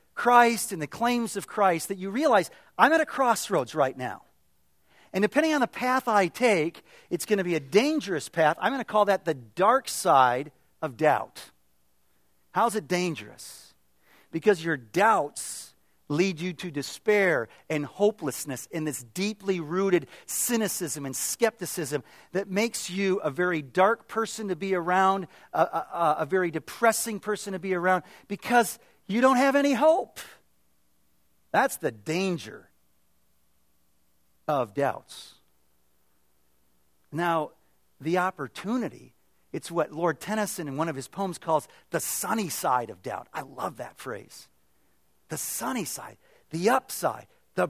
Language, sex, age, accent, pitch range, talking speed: English, male, 40-59, American, 135-210 Hz, 145 wpm